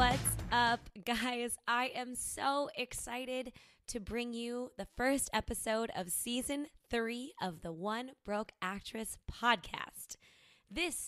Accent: American